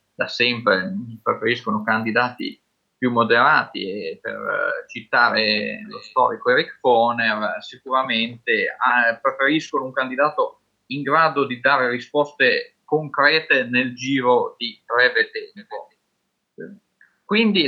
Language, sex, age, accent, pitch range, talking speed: Italian, male, 20-39, native, 120-170 Hz, 100 wpm